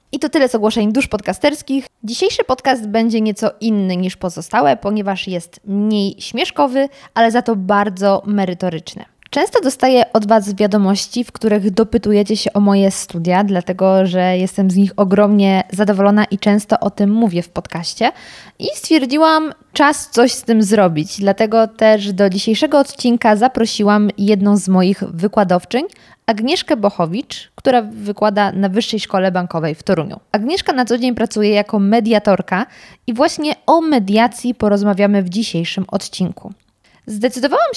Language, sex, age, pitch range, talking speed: Polish, female, 20-39, 195-235 Hz, 145 wpm